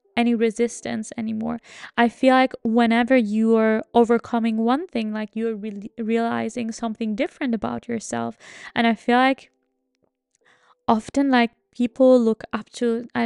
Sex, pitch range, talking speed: female, 225-250 Hz, 135 wpm